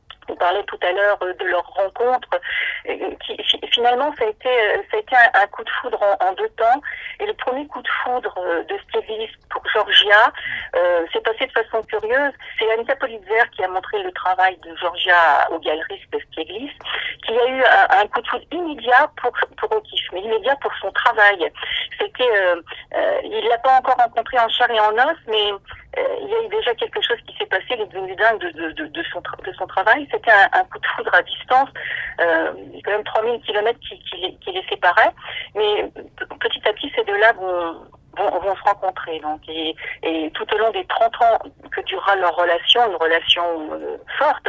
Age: 50-69